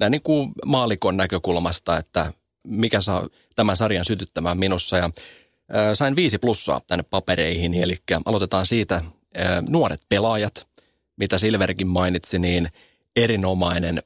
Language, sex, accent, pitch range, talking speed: Finnish, male, native, 90-105 Hz, 115 wpm